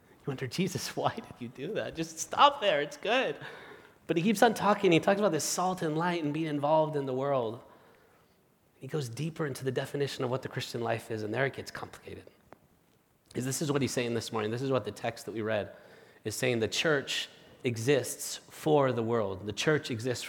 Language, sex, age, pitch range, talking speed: English, male, 30-49, 110-145 Hz, 220 wpm